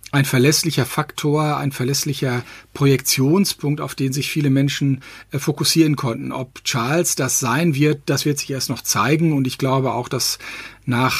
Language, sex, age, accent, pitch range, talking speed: German, male, 50-69, German, 125-145 Hz, 165 wpm